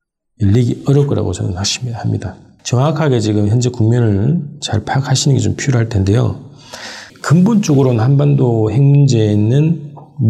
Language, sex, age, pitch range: Korean, male, 40-59, 110-145 Hz